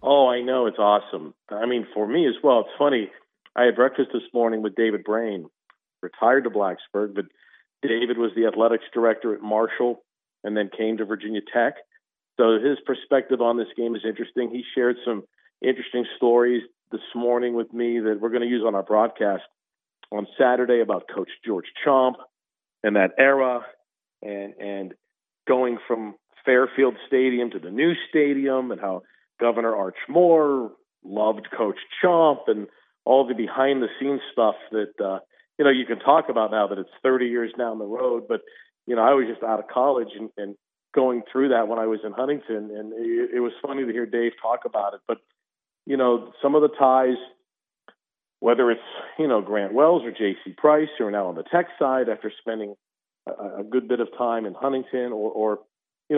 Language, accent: English, American